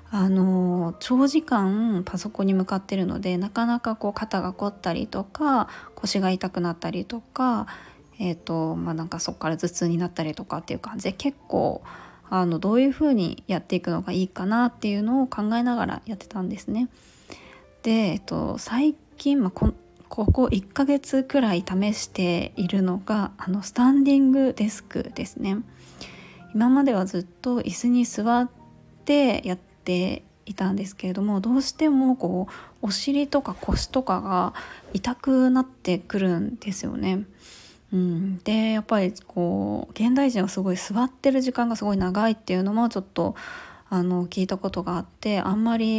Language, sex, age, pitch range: Japanese, female, 20-39, 185-245 Hz